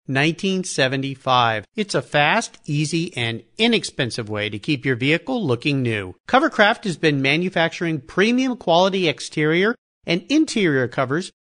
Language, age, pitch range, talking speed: English, 50-69, 135-210 Hz, 125 wpm